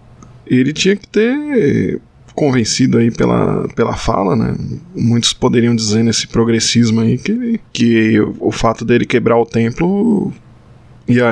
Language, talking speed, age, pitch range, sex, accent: Portuguese, 140 wpm, 20-39, 115-140 Hz, male, Brazilian